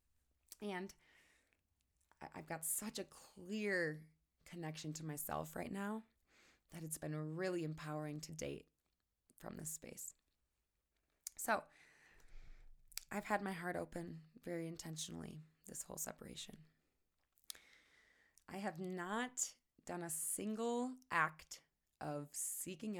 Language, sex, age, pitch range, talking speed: English, female, 20-39, 150-185 Hz, 105 wpm